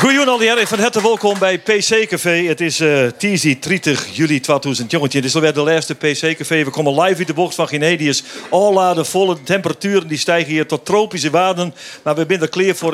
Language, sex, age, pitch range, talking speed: Dutch, male, 50-69, 140-195 Hz, 205 wpm